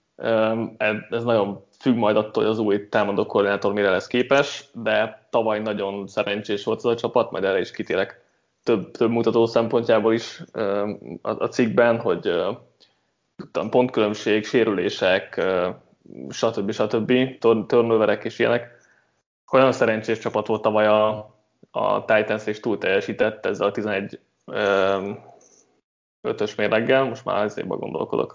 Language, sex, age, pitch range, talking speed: Hungarian, male, 20-39, 105-130 Hz, 125 wpm